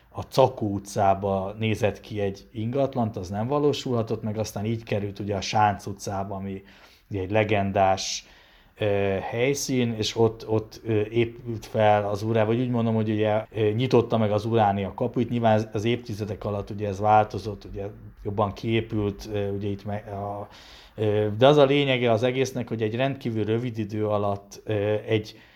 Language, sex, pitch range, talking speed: Hungarian, male, 105-115 Hz, 155 wpm